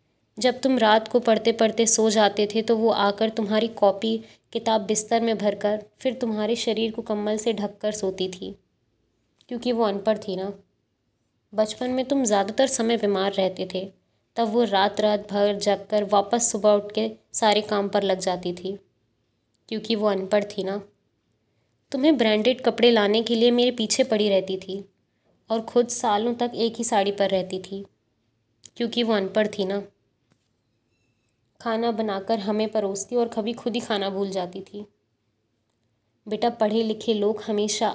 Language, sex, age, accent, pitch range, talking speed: Hindi, female, 20-39, native, 195-225 Hz, 165 wpm